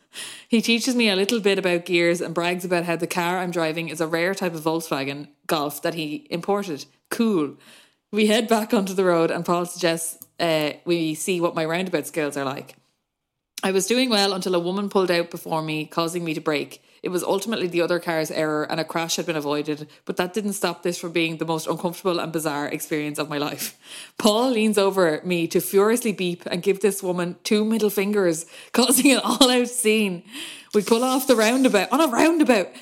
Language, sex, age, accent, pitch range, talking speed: English, female, 20-39, Irish, 170-225 Hz, 210 wpm